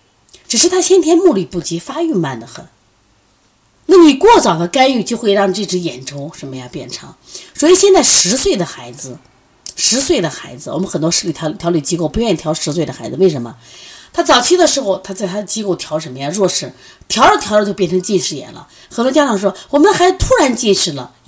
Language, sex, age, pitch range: Chinese, female, 30-49, 145-225 Hz